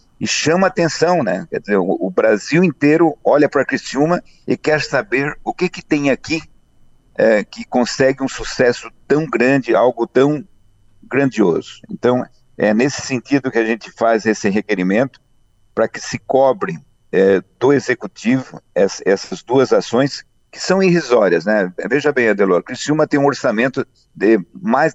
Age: 50-69